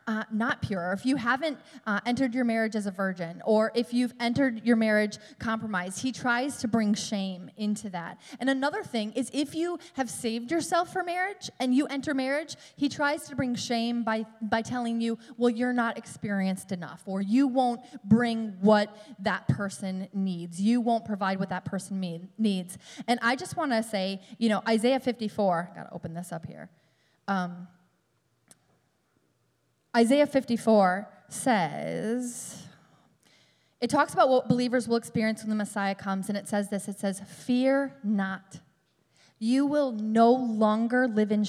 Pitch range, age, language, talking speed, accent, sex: 190-240 Hz, 20-39, English, 170 wpm, American, female